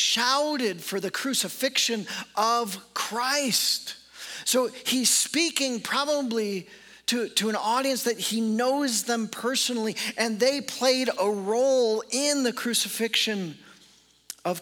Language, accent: English, American